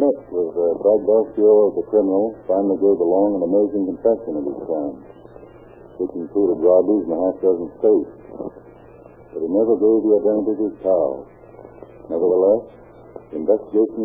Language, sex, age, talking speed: English, male, 60-79, 160 wpm